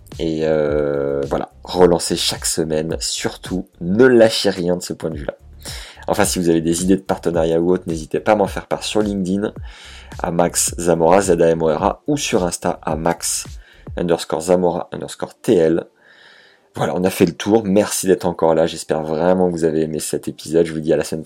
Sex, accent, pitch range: male, French, 80-90 Hz